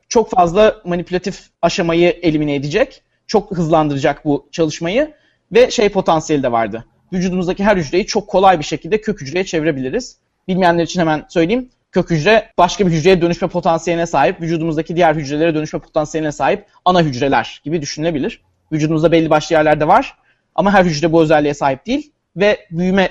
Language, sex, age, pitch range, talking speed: Turkish, male, 30-49, 160-205 Hz, 160 wpm